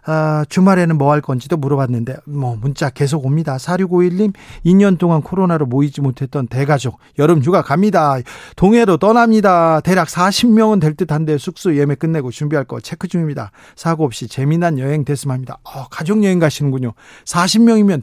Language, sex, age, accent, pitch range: Korean, male, 40-59, native, 140-180 Hz